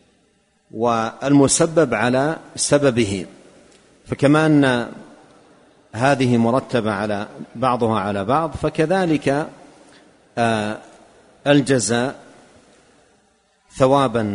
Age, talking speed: 50-69, 60 wpm